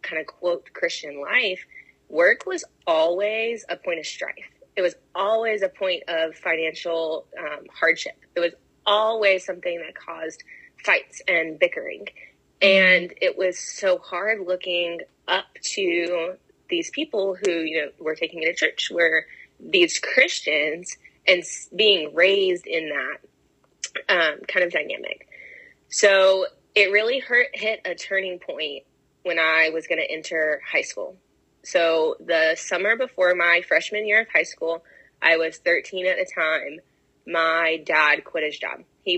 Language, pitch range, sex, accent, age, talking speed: English, 165-220 Hz, female, American, 20-39, 150 wpm